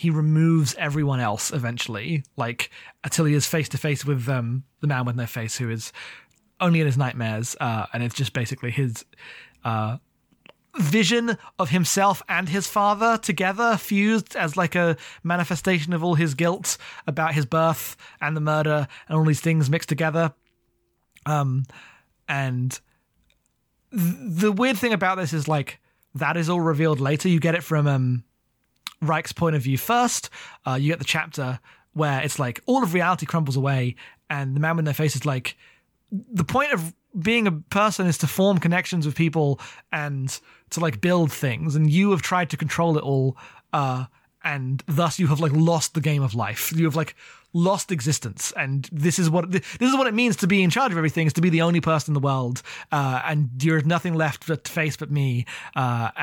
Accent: British